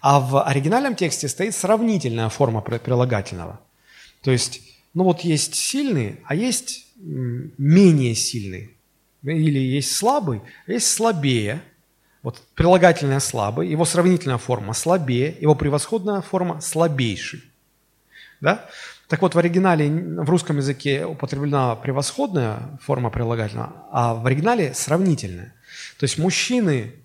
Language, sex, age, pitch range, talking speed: Russian, male, 30-49, 125-180 Hz, 120 wpm